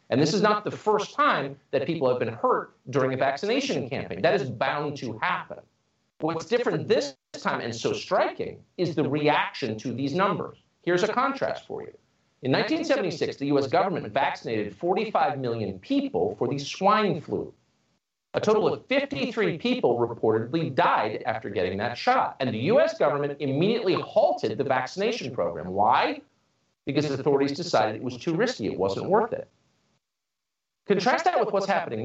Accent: American